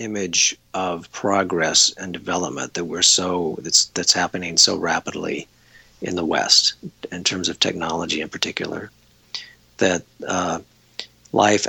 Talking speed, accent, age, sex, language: 130 wpm, American, 50-69, male, English